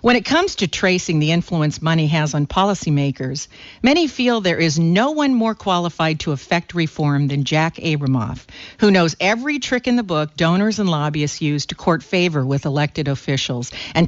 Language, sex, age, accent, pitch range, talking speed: English, female, 50-69, American, 155-205 Hz, 185 wpm